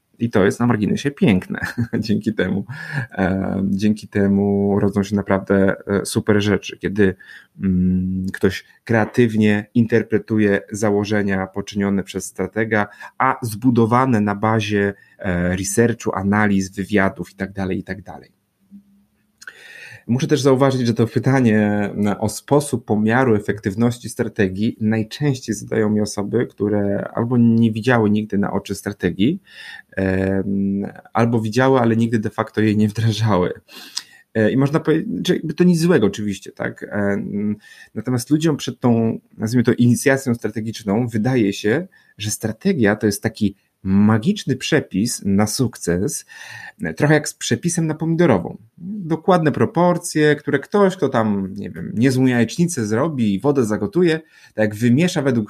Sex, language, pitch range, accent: male, Polish, 105-135 Hz, native